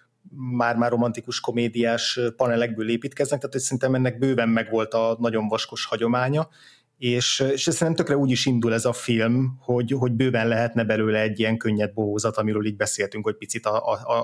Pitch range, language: 115-130 Hz, Hungarian